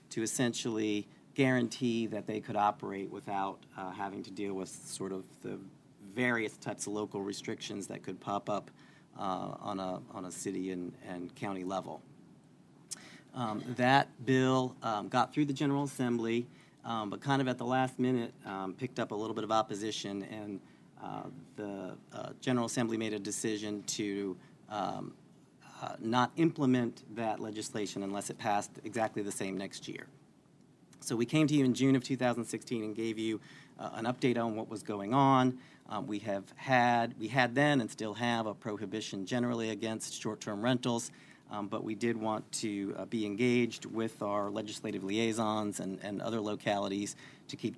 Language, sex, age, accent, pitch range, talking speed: English, male, 40-59, American, 105-125 Hz, 175 wpm